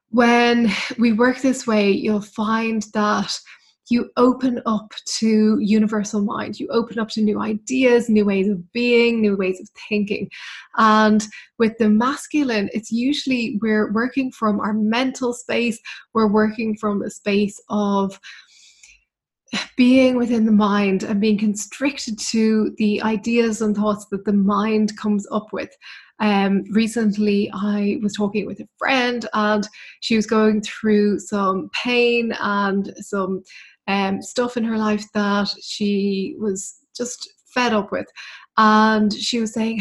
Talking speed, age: 145 wpm, 20-39